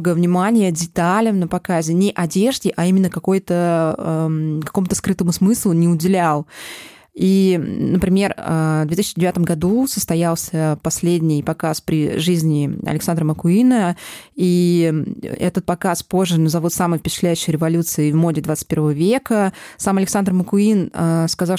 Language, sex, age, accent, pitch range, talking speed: Russian, female, 20-39, native, 165-195 Hz, 115 wpm